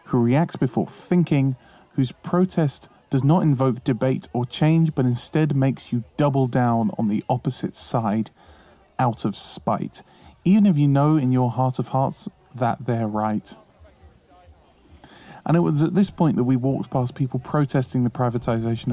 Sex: male